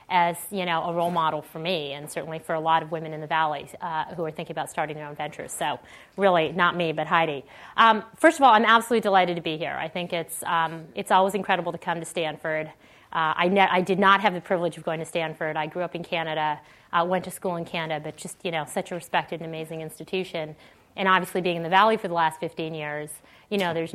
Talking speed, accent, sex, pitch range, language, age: 255 wpm, American, female, 160-200 Hz, English, 30-49